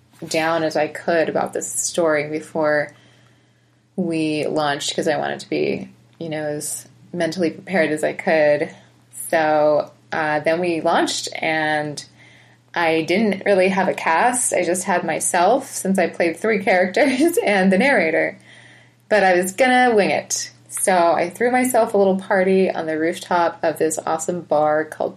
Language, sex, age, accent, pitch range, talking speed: English, female, 20-39, American, 160-200 Hz, 160 wpm